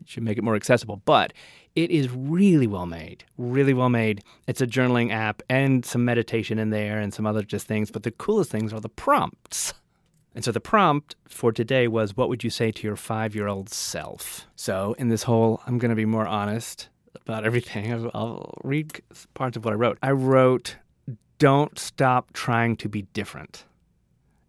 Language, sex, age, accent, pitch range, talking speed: English, male, 30-49, American, 110-130 Hz, 190 wpm